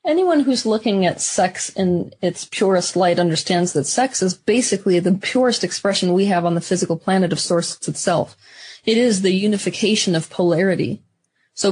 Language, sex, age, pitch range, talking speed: English, female, 30-49, 175-205 Hz, 170 wpm